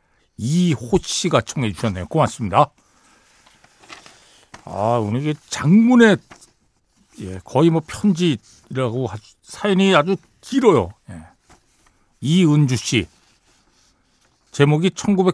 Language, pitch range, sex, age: Korean, 100-150 Hz, male, 60-79